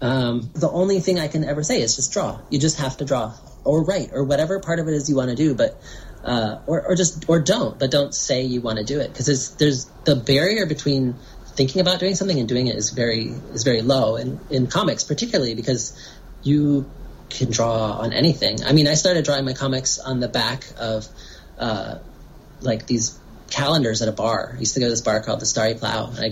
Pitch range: 115-150 Hz